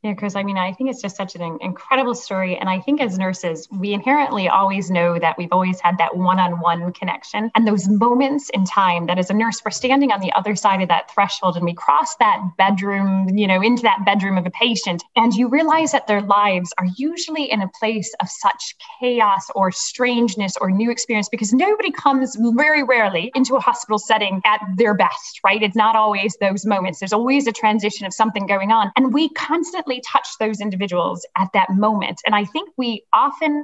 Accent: American